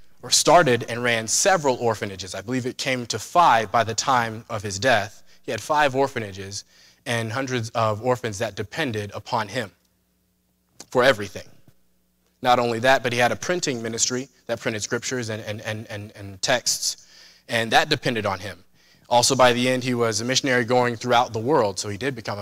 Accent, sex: American, male